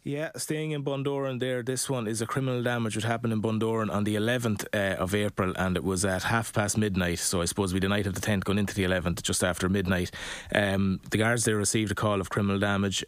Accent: Irish